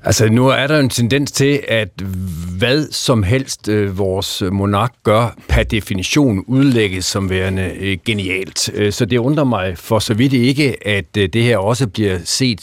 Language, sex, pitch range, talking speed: Danish, male, 100-130 Hz, 155 wpm